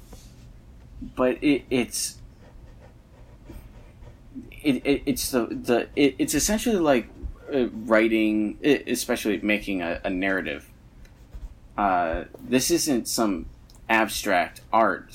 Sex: male